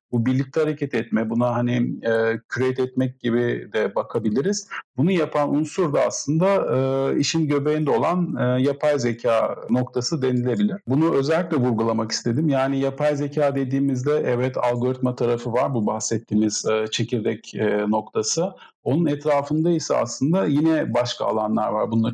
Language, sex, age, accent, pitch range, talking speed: Turkish, male, 50-69, native, 115-140 Hz, 145 wpm